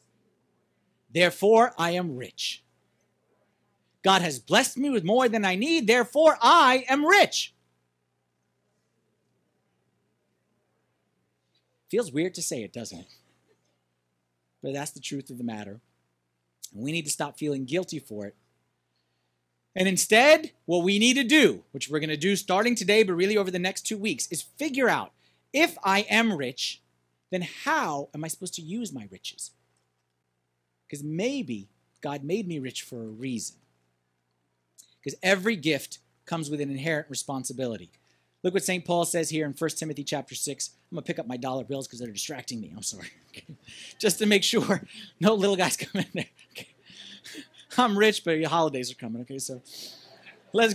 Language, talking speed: English, 165 wpm